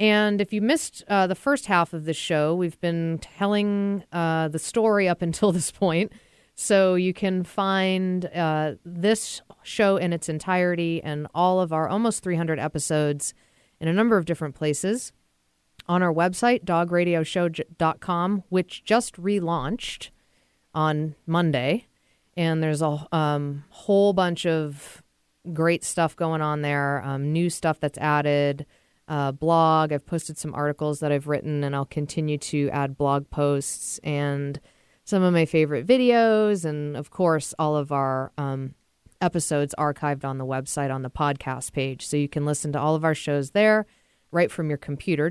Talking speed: 160 wpm